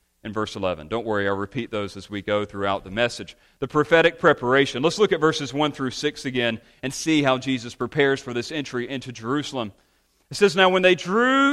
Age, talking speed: 40-59, 215 wpm